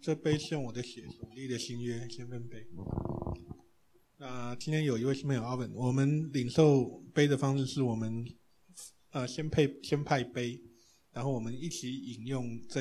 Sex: male